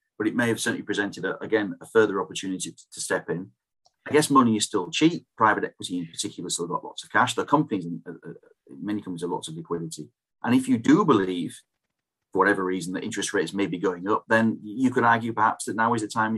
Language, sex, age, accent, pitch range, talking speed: English, male, 30-49, British, 105-120 Hz, 230 wpm